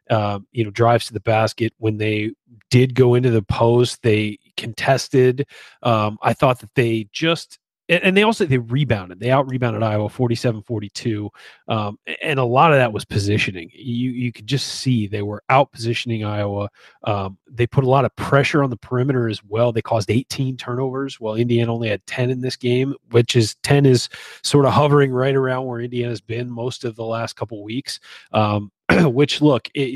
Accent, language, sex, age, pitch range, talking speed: American, English, male, 30-49, 110-130 Hz, 200 wpm